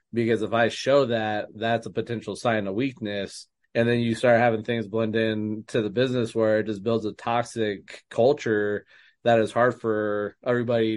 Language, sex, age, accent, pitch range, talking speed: English, male, 20-39, American, 105-120 Hz, 185 wpm